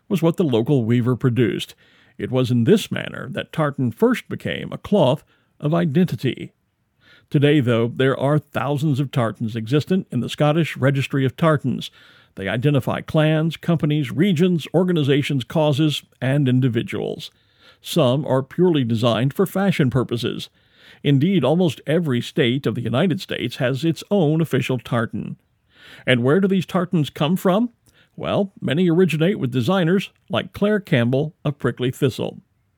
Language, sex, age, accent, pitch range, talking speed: English, male, 50-69, American, 125-175 Hz, 145 wpm